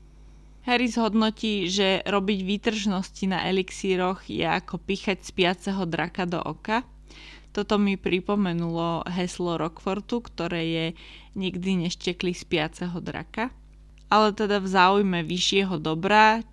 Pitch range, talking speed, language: 165-195 Hz, 115 wpm, Slovak